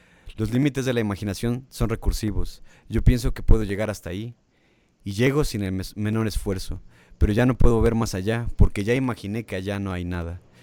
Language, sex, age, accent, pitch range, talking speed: Spanish, male, 30-49, Mexican, 95-115 Hz, 200 wpm